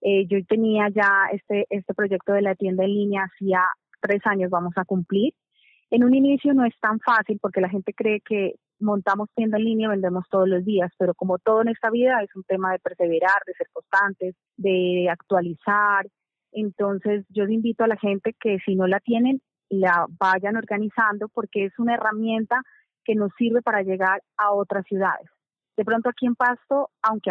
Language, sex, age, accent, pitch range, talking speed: Spanish, female, 30-49, Colombian, 190-220 Hz, 190 wpm